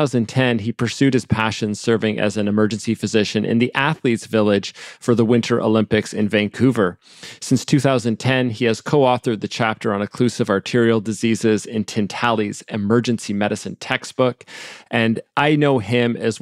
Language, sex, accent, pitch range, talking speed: English, male, American, 105-125 Hz, 150 wpm